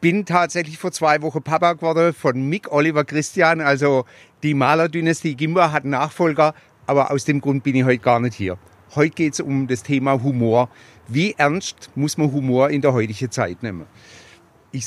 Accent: German